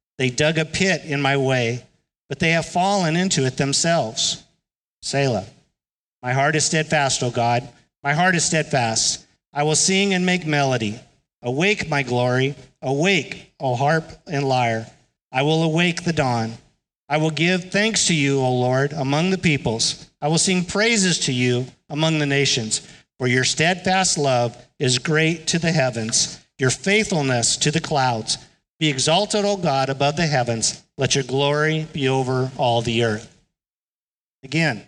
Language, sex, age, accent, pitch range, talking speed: English, male, 50-69, American, 125-160 Hz, 160 wpm